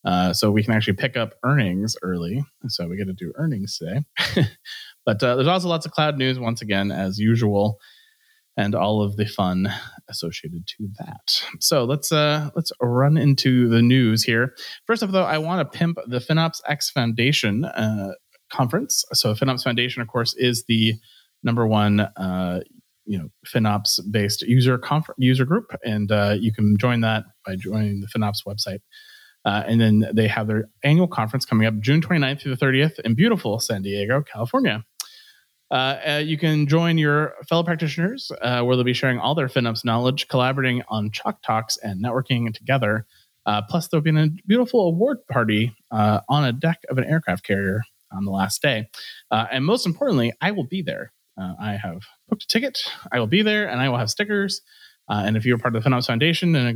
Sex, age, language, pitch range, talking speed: male, 30-49, English, 110-155 Hz, 195 wpm